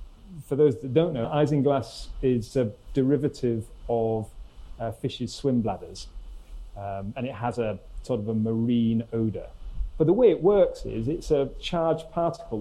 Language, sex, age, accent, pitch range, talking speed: English, male, 40-59, British, 110-135 Hz, 160 wpm